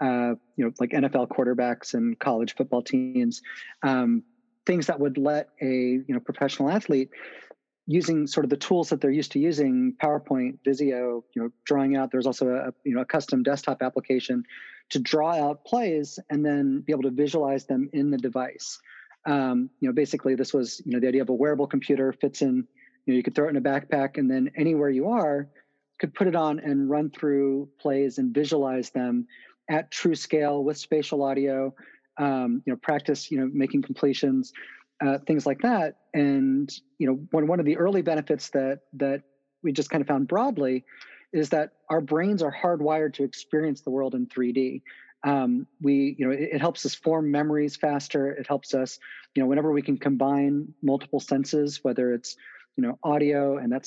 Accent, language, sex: American, English, male